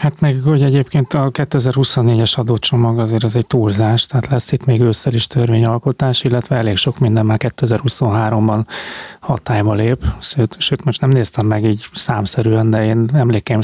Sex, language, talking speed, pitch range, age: male, Hungarian, 165 wpm, 115-135 Hz, 30-49